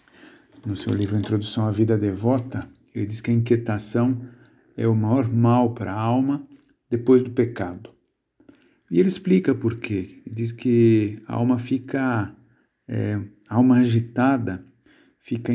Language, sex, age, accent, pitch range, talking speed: Portuguese, male, 50-69, Brazilian, 110-125 Hz, 145 wpm